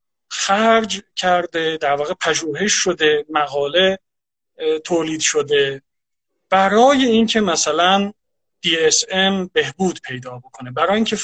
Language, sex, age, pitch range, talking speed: English, male, 40-59, 140-215 Hz, 95 wpm